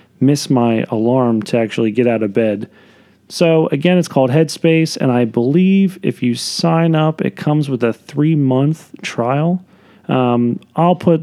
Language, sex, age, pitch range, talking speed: English, male, 40-59, 115-155 Hz, 165 wpm